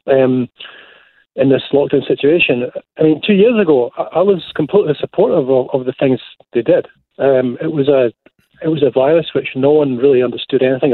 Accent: British